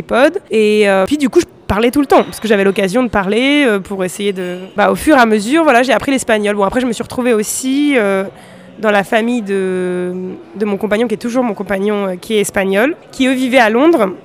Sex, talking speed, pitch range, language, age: female, 250 wpm, 200-250 Hz, French, 20-39